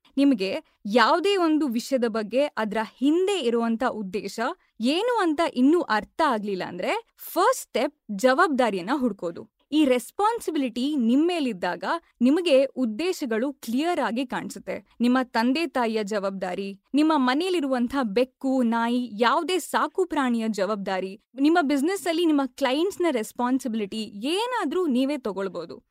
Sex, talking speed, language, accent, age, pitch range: female, 110 wpm, Kannada, native, 20-39, 230-320 Hz